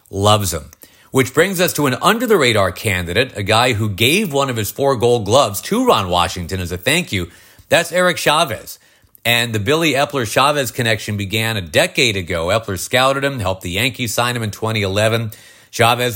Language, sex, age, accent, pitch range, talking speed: English, male, 40-59, American, 95-125 Hz, 180 wpm